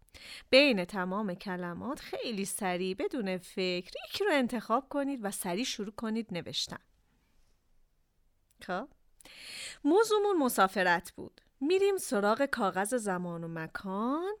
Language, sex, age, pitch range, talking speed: Persian, female, 40-59, 185-280 Hz, 110 wpm